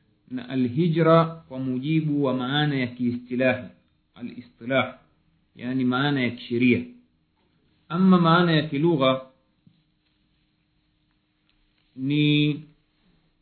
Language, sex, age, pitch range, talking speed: Swahili, male, 50-69, 130-160 Hz, 75 wpm